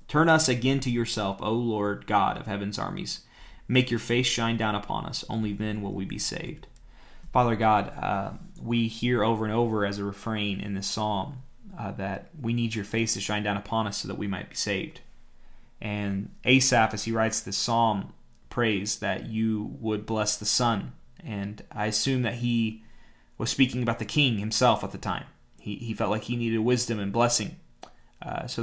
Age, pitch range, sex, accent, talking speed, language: 30-49, 105-120 Hz, male, American, 195 wpm, English